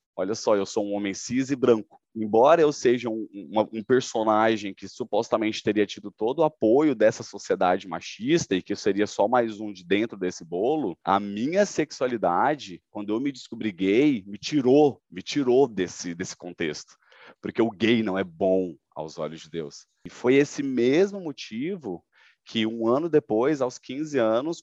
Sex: male